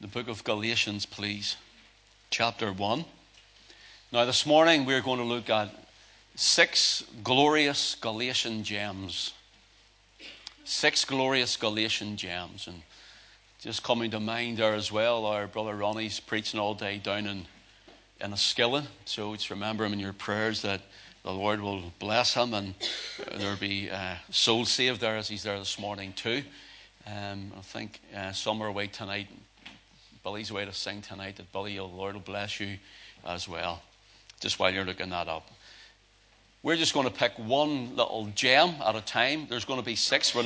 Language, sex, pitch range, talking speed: English, male, 100-120 Hz, 165 wpm